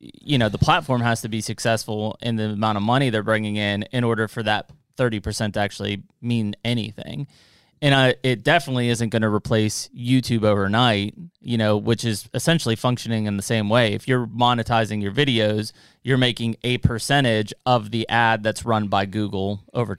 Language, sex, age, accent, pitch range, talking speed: English, male, 30-49, American, 110-135 Hz, 185 wpm